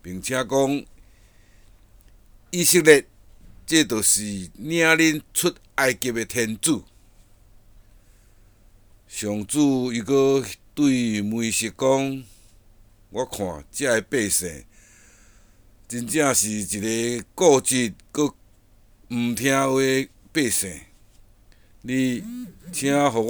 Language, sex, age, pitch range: Chinese, male, 60-79, 100-135 Hz